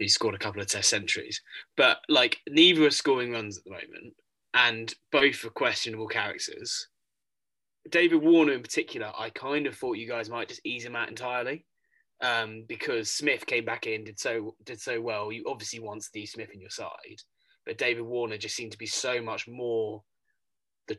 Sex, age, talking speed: male, 20-39, 190 wpm